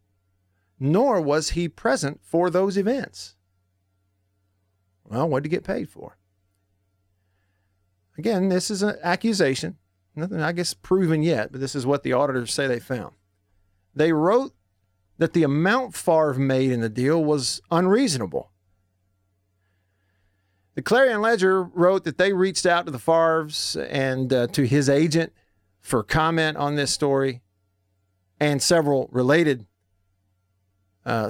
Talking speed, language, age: 135 wpm, English, 40-59